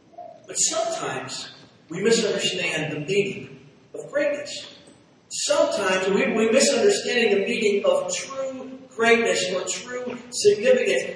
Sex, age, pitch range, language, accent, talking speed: male, 40-59, 195-260 Hz, English, American, 110 wpm